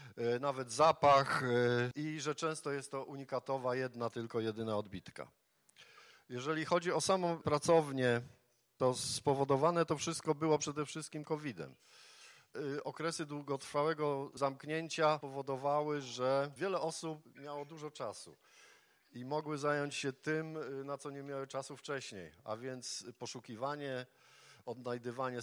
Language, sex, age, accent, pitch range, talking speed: Polish, male, 50-69, native, 125-150 Hz, 120 wpm